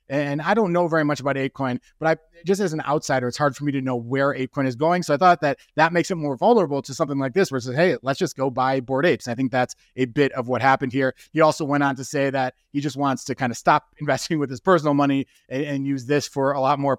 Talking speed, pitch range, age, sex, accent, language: 290 wpm, 135-160 Hz, 30-49, male, American, English